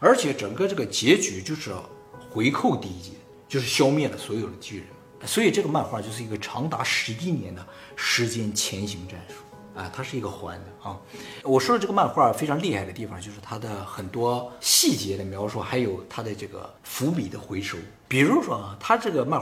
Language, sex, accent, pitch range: Chinese, male, native, 100-135 Hz